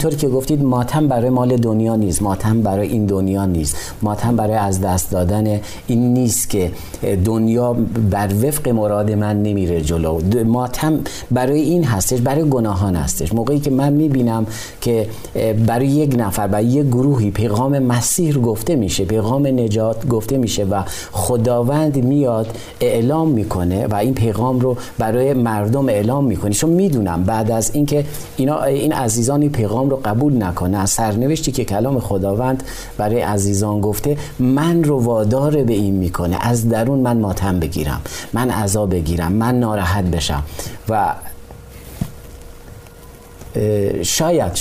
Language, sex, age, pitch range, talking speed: Persian, male, 40-59, 100-125 Hz, 145 wpm